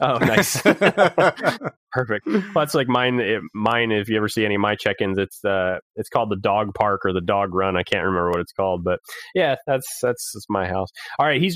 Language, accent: English, American